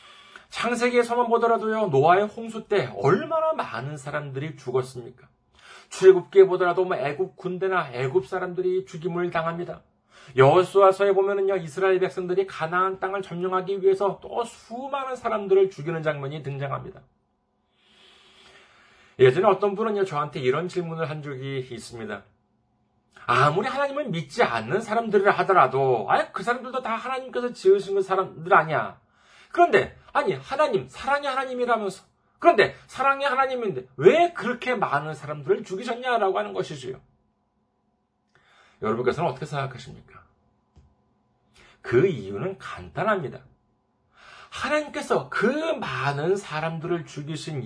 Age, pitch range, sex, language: 40-59, 155-235 Hz, male, Korean